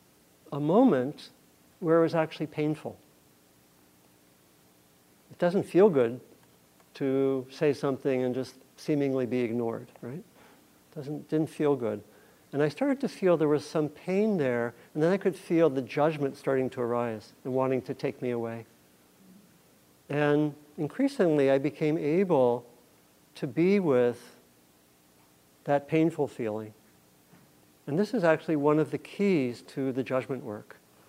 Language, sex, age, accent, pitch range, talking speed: English, male, 60-79, American, 115-150 Hz, 140 wpm